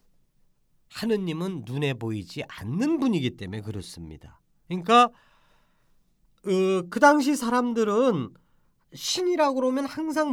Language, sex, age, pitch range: Korean, male, 40-59, 160-245 Hz